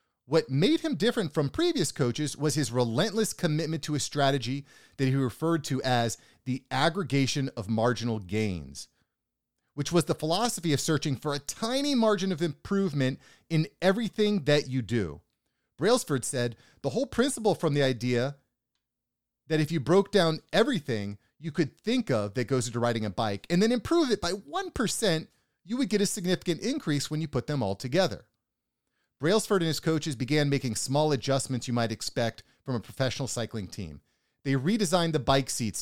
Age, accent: 30-49, American